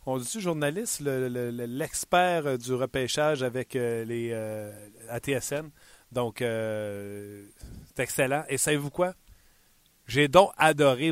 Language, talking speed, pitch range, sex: French, 110 wpm, 120-150 Hz, male